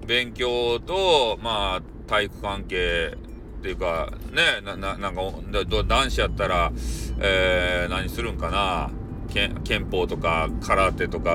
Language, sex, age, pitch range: Japanese, male, 40-59, 95-150 Hz